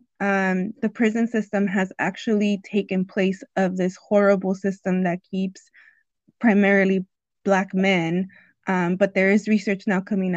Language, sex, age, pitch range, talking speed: English, female, 20-39, 195-240 Hz, 140 wpm